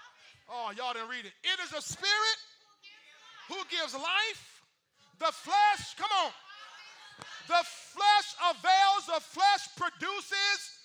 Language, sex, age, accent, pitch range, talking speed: English, male, 40-59, American, 305-375 Hz, 120 wpm